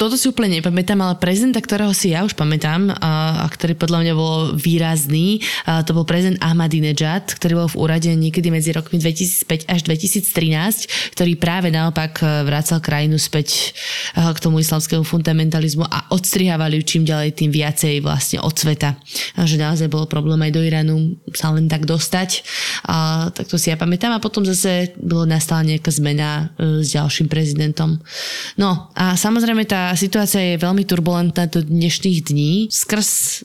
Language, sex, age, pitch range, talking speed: Slovak, female, 20-39, 155-180 Hz, 165 wpm